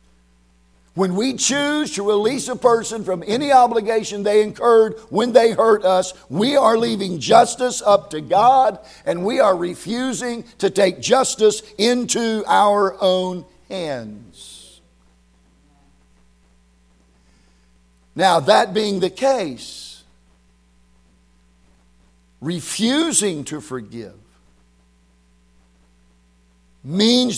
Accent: American